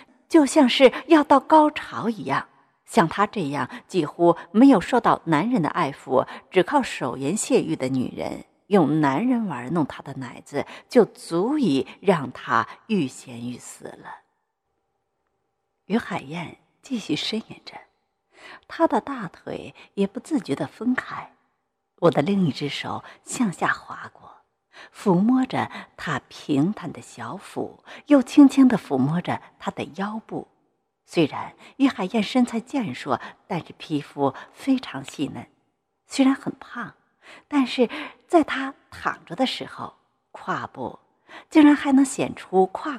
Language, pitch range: Chinese, 170-270 Hz